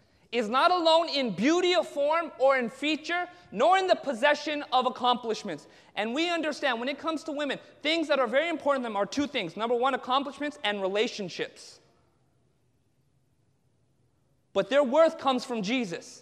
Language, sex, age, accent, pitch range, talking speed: English, male, 30-49, American, 240-310 Hz, 165 wpm